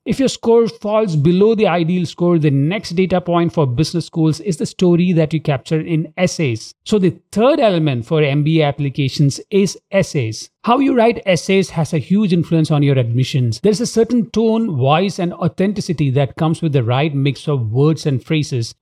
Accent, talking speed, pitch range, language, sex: Indian, 195 wpm, 145-200 Hz, English, male